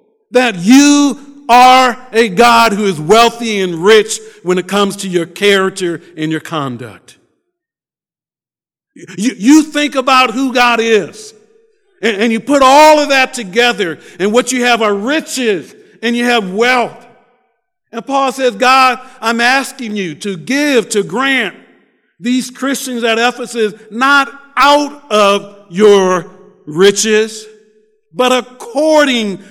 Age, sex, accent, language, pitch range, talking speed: 50-69, male, American, English, 155-245 Hz, 135 wpm